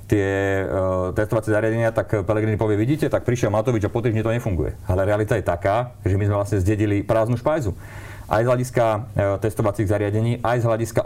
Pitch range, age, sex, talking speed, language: 100-115 Hz, 30-49, male, 185 wpm, Slovak